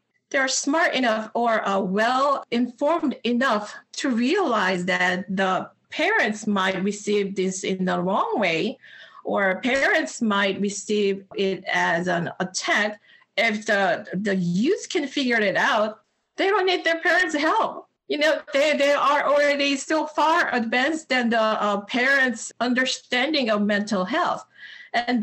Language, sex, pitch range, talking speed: English, female, 210-305 Hz, 140 wpm